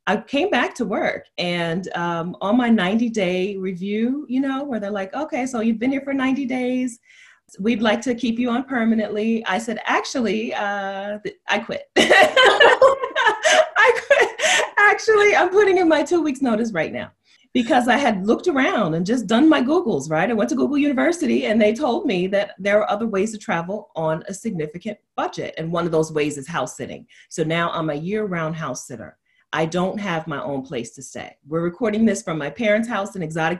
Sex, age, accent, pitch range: female, 30-49, American, 160-240 Hz